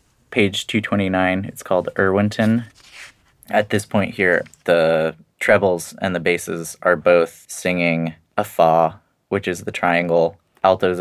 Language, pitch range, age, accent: English, 85-125 Hz, 20-39, American